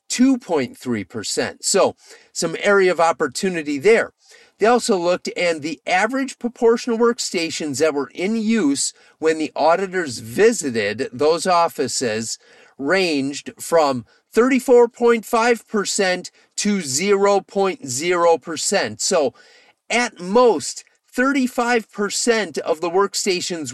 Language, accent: English, American